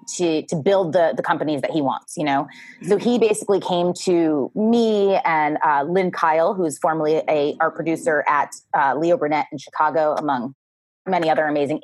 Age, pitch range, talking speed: 20-39, 155-200 Hz, 180 wpm